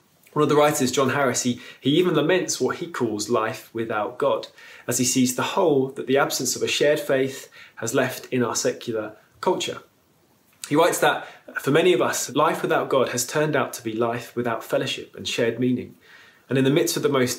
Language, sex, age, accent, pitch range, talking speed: English, male, 20-39, British, 120-150 Hz, 215 wpm